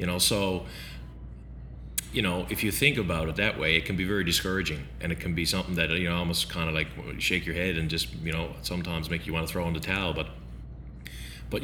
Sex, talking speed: male, 240 wpm